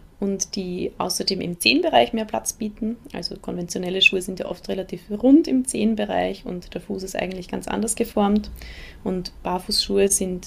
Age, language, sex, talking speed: 20-39, German, female, 165 wpm